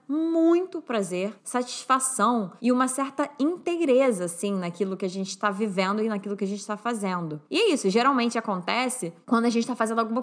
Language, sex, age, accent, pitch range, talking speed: Portuguese, female, 20-39, Brazilian, 200-265 Hz, 190 wpm